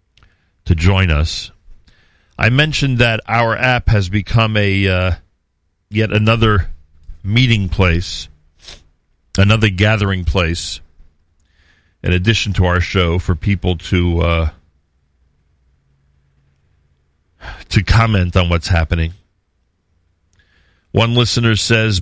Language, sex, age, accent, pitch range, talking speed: English, male, 40-59, American, 80-100 Hz, 95 wpm